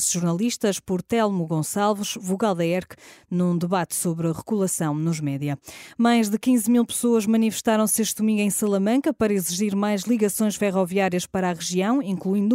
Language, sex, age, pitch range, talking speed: Portuguese, female, 20-39, 150-215 Hz, 160 wpm